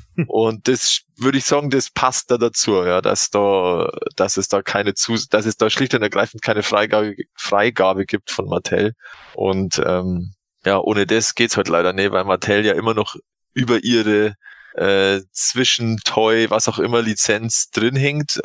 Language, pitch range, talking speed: German, 100-125 Hz, 180 wpm